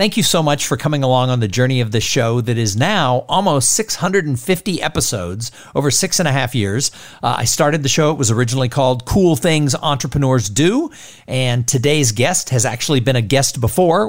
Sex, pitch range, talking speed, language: male, 125-170 Hz, 200 wpm, English